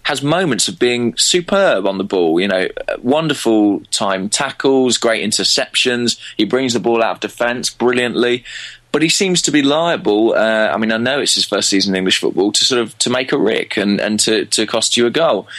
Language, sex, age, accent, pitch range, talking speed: English, male, 20-39, British, 100-125 Hz, 215 wpm